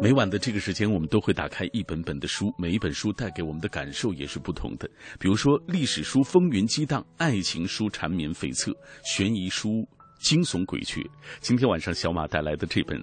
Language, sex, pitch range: Chinese, male, 85-120 Hz